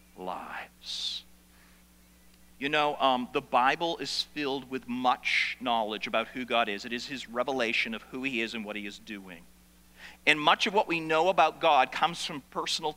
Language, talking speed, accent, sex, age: English, 180 wpm, American, male, 40-59